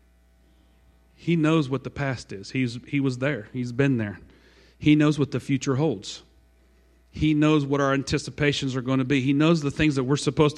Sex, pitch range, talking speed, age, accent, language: male, 105-140 Hz, 200 wpm, 40-59, American, English